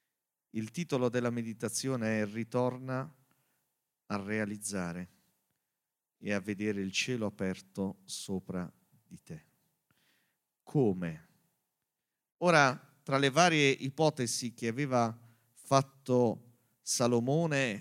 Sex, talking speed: male, 90 wpm